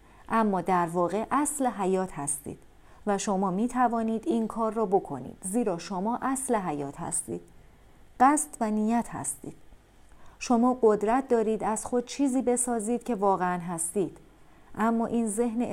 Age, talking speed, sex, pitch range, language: 40-59, 135 wpm, female, 175-235 Hz, Persian